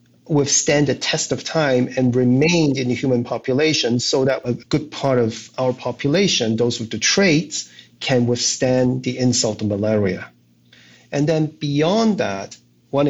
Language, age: English, 30-49